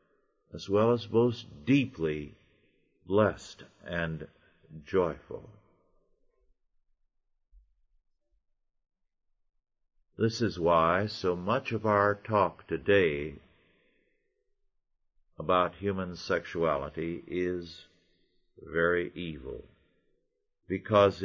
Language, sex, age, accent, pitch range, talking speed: English, male, 50-69, American, 90-140 Hz, 70 wpm